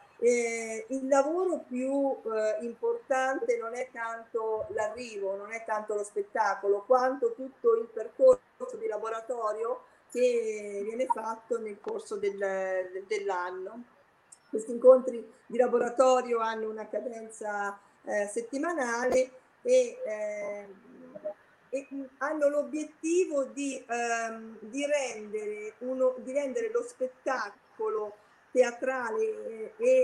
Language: Italian